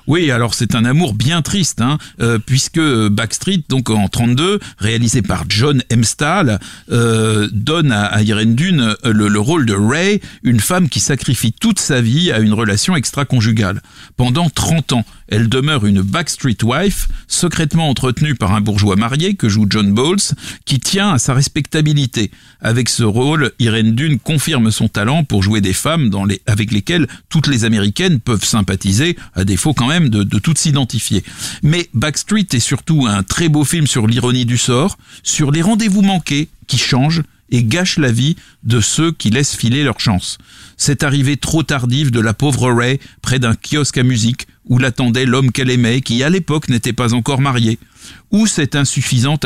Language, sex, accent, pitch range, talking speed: French, male, French, 110-150 Hz, 180 wpm